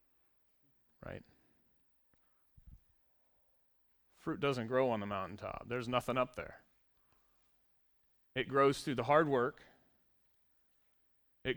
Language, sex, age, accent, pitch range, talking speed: English, male, 30-49, American, 120-145 Hz, 95 wpm